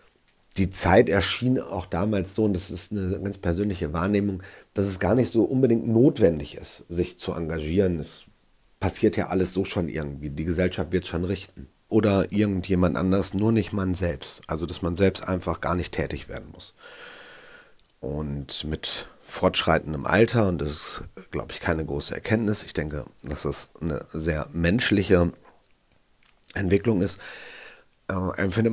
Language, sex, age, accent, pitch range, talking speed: German, male, 40-59, German, 85-100 Hz, 155 wpm